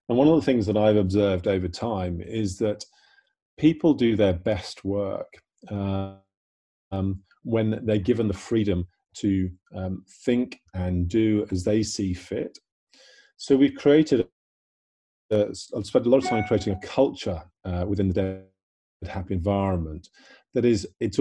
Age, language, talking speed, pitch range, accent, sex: 40-59, English, 150 wpm, 95-110 Hz, British, male